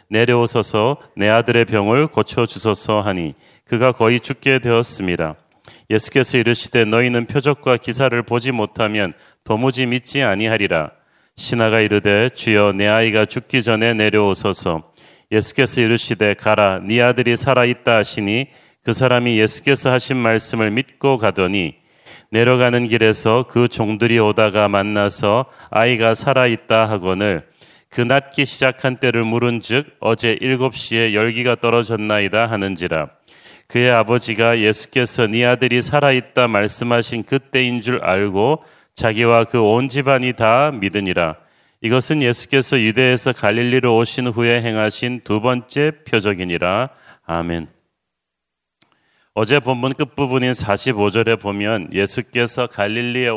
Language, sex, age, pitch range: Korean, male, 40-59, 105-125 Hz